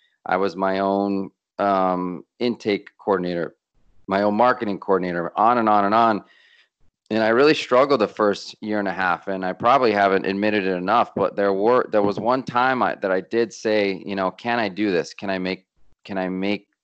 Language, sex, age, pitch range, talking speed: English, male, 30-49, 95-105 Hz, 205 wpm